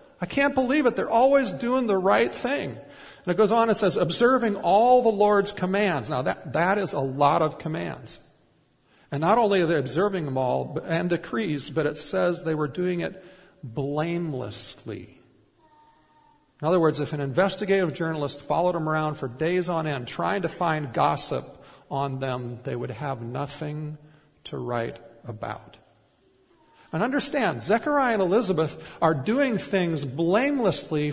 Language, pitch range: English, 125-180 Hz